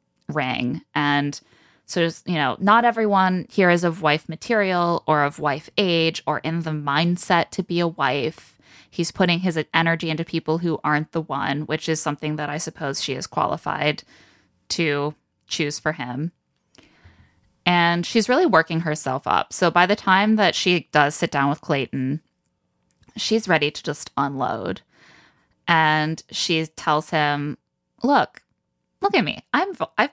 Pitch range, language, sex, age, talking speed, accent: 150-190 Hz, English, female, 20-39, 155 wpm, American